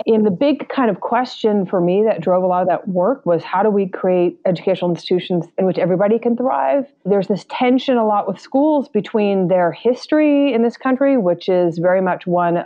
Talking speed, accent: 215 wpm, American